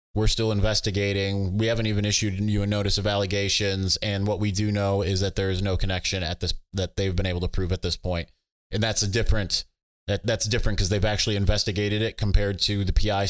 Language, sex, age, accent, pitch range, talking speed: English, male, 20-39, American, 95-145 Hz, 215 wpm